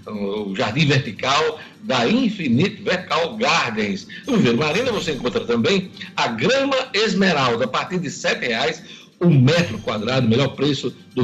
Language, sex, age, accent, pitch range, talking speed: Portuguese, male, 60-79, Brazilian, 125-200 Hz, 150 wpm